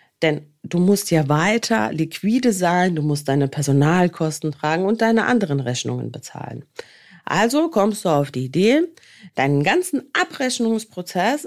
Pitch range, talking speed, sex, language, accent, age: 150-230 Hz, 135 wpm, female, German, German, 40-59